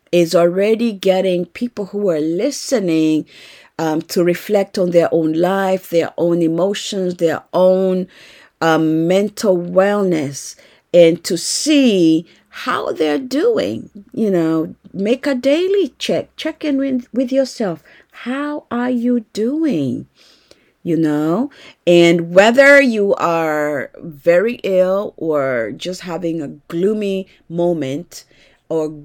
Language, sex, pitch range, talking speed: English, female, 160-215 Hz, 120 wpm